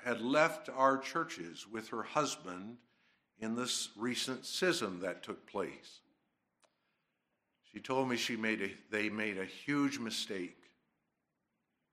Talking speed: 110 wpm